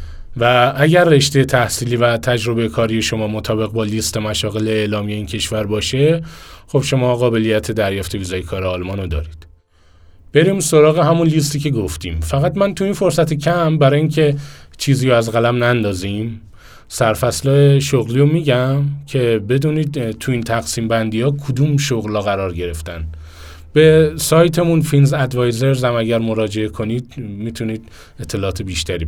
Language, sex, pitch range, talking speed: Persian, male, 95-135 Hz, 140 wpm